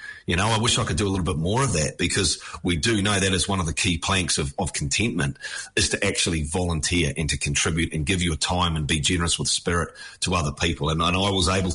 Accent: Australian